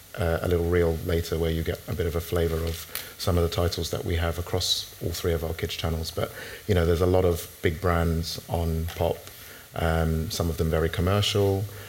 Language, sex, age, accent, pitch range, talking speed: English, male, 30-49, British, 85-90 Hz, 225 wpm